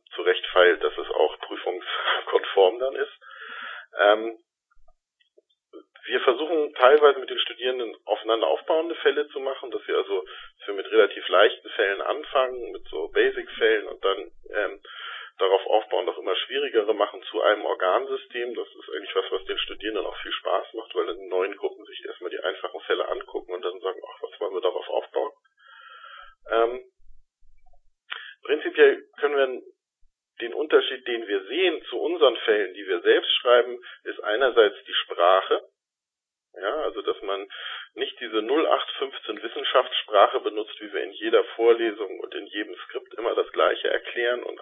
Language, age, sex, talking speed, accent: German, 40-59, male, 155 wpm, German